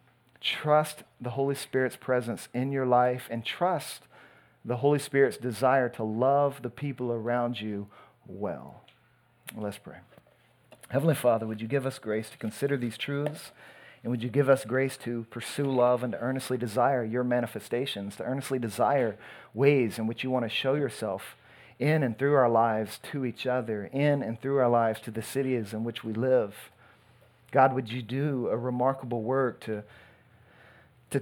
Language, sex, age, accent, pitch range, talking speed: English, male, 40-59, American, 115-135 Hz, 170 wpm